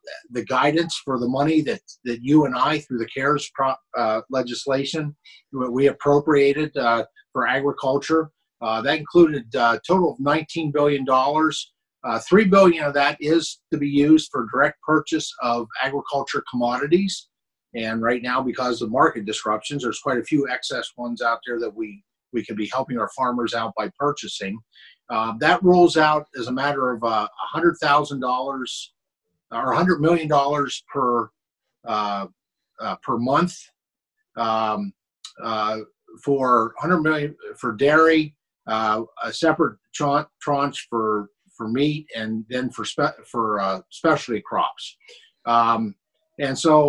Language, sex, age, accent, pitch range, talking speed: English, male, 50-69, American, 120-155 Hz, 140 wpm